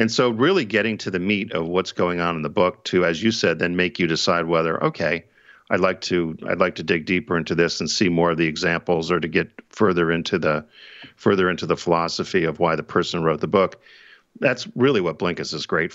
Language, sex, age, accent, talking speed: English, male, 50-69, American, 235 wpm